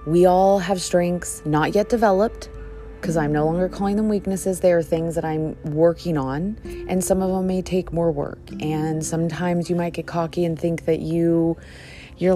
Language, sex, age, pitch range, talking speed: English, female, 30-49, 150-185 Hz, 195 wpm